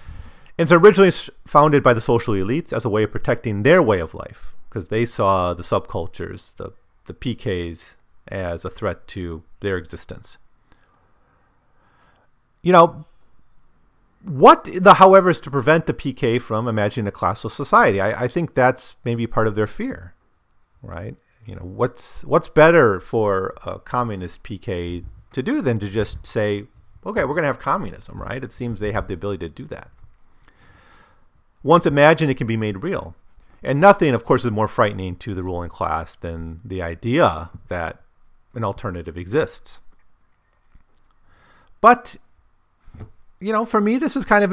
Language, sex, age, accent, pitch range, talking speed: English, male, 40-59, American, 95-140 Hz, 160 wpm